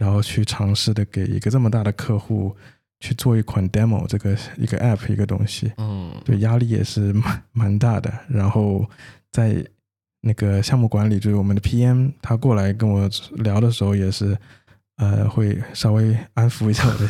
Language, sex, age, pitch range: Chinese, male, 20-39, 100-115 Hz